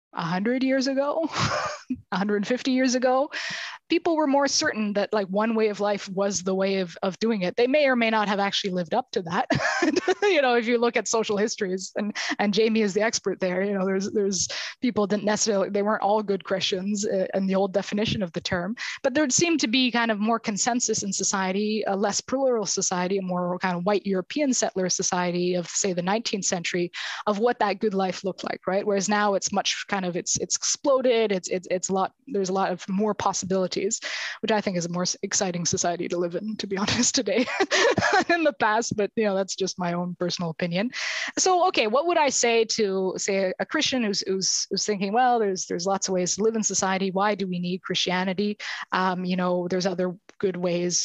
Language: English